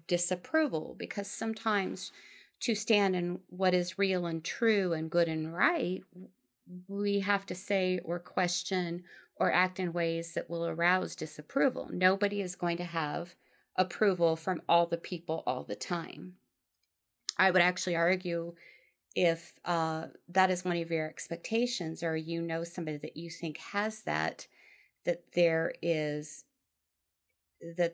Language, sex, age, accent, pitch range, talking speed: English, female, 30-49, American, 160-185 Hz, 145 wpm